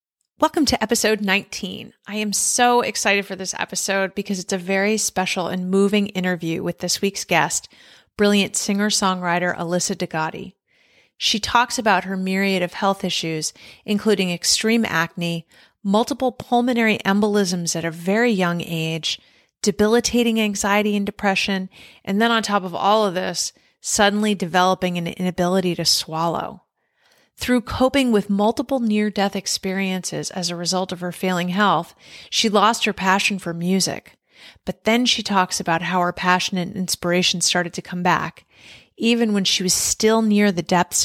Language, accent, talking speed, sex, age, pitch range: English, American, 155 wpm, female, 30-49, 180-210 Hz